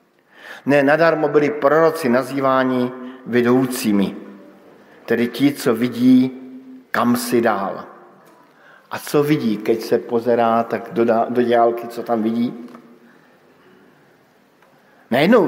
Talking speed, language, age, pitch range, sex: 105 wpm, Slovak, 50-69, 115-155 Hz, male